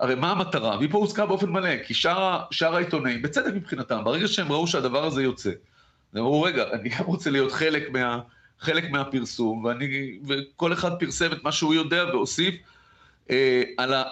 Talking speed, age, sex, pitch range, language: 155 wpm, 40-59, male, 125-165 Hz, Hebrew